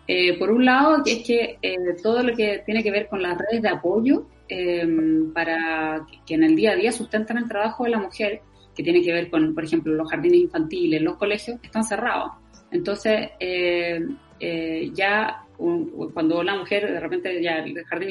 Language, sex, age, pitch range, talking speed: Spanish, female, 20-39, 160-220 Hz, 200 wpm